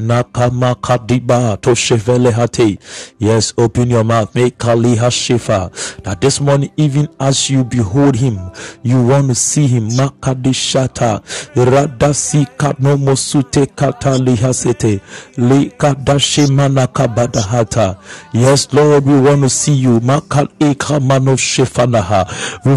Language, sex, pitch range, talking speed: English, male, 125-150 Hz, 85 wpm